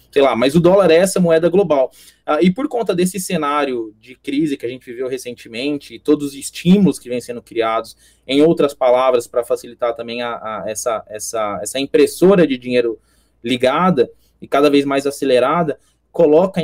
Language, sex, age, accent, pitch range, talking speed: Portuguese, male, 20-39, Brazilian, 120-155 Hz, 175 wpm